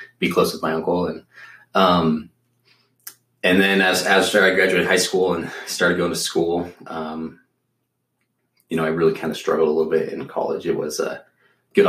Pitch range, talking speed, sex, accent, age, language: 80-120 Hz, 185 wpm, male, American, 20-39, English